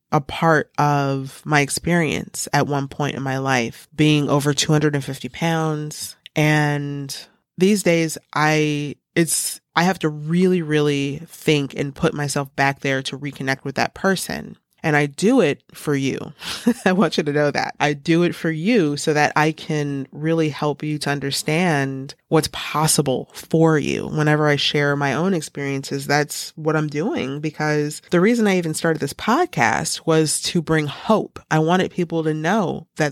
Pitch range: 145-165 Hz